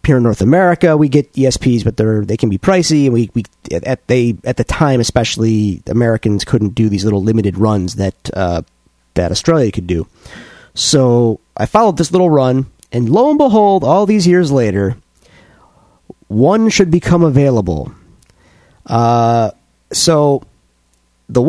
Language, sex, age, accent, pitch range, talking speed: English, male, 30-49, American, 100-160 Hz, 155 wpm